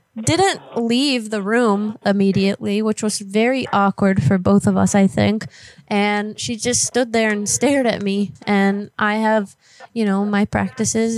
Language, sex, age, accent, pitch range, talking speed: English, female, 20-39, American, 200-225 Hz, 165 wpm